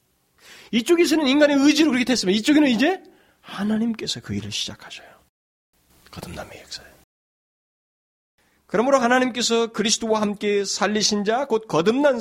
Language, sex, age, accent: Korean, male, 40-59, native